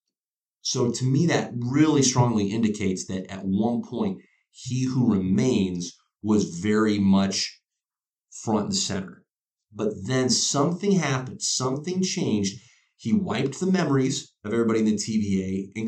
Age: 30-49